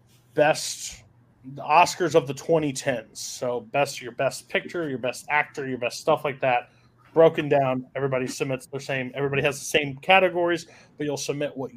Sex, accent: male, American